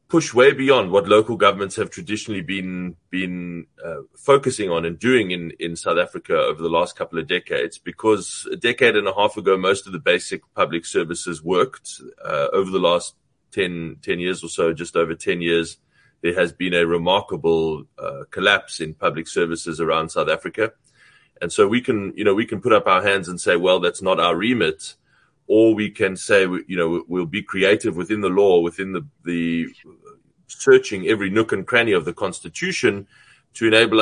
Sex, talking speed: male, 190 wpm